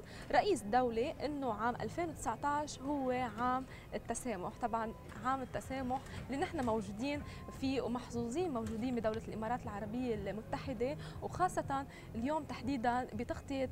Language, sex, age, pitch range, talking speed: Arabic, female, 20-39, 225-285 Hz, 110 wpm